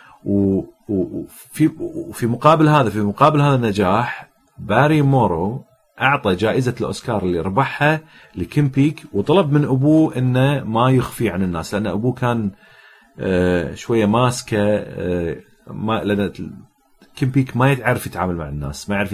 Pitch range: 100-135 Hz